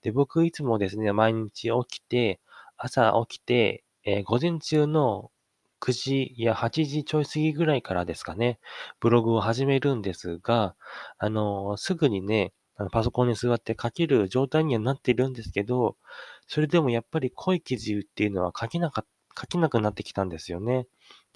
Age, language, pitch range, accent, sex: 20-39, Japanese, 100-140 Hz, native, male